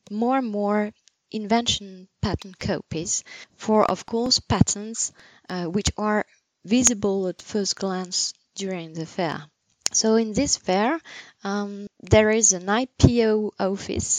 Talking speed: 125 wpm